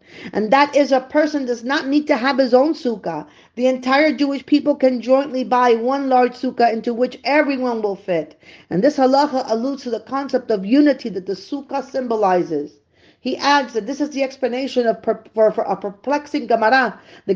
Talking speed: 185 wpm